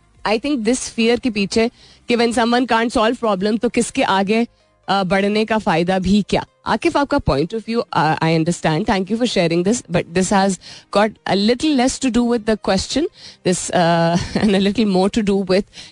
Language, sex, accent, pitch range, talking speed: Hindi, female, native, 170-230 Hz, 130 wpm